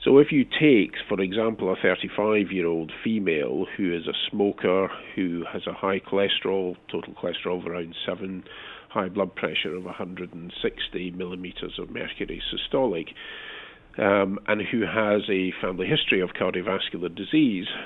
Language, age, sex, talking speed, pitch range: English, 50-69, male, 140 wpm, 90-100 Hz